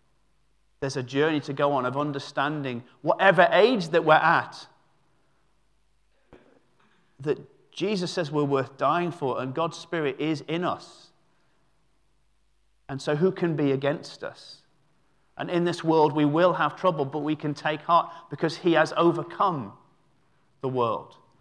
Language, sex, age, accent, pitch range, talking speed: English, male, 40-59, British, 145-180 Hz, 145 wpm